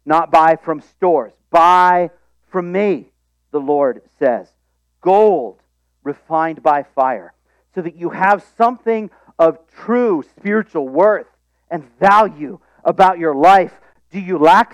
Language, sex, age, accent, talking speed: English, male, 50-69, American, 125 wpm